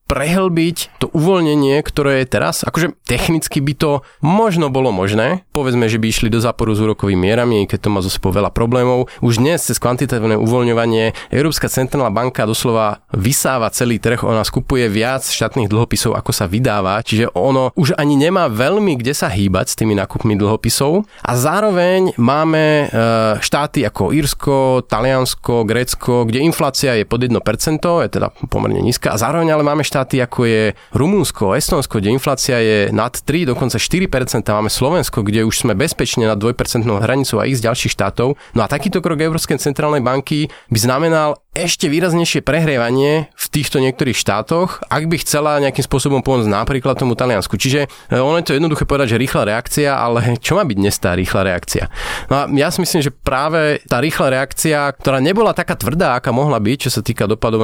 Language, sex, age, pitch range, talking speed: Slovak, male, 30-49, 115-145 Hz, 180 wpm